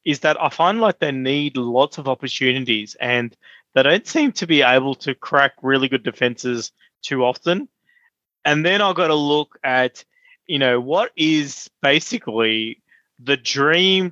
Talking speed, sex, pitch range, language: 160 wpm, male, 130-155 Hz, English